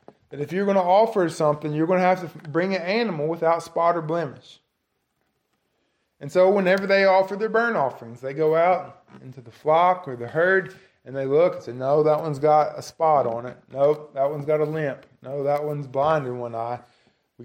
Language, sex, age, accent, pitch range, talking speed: English, male, 20-39, American, 140-190 Hz, 220 wpm